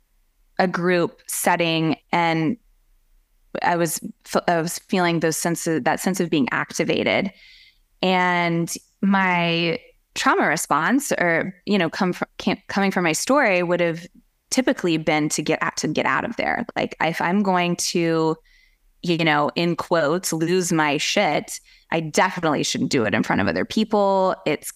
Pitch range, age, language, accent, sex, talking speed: 160-190 Hz, 20-39, English, American, female, 160 wpm